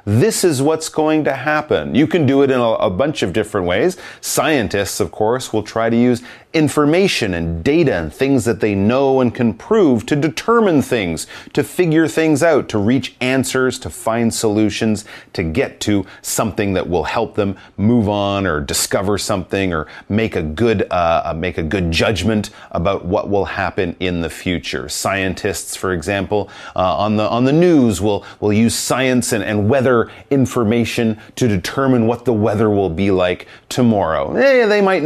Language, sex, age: Chinese, male, 30-49